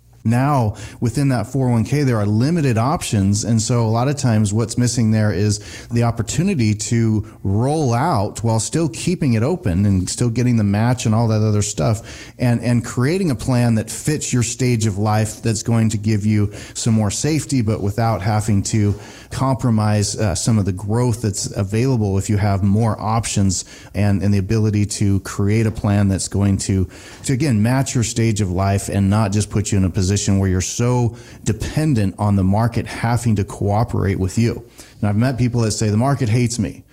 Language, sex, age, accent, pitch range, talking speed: English, male, 30-49, American, 100-120 Hz, 200 wpm